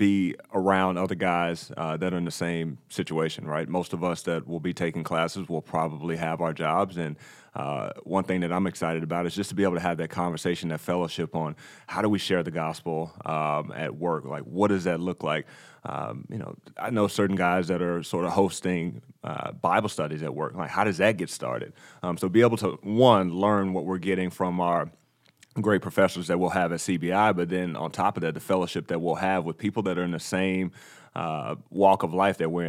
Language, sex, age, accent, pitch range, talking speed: English, male, 30-49, American, 85-95 Hz, 230 wpm